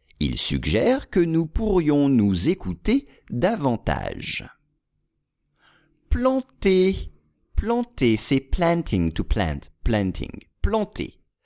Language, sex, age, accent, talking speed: English, male, 50-69, French, 85 wpm